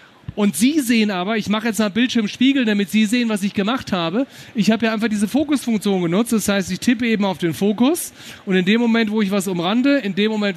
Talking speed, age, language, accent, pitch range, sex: 245 wpm, 40-59, German, German, 185-235 Hz, male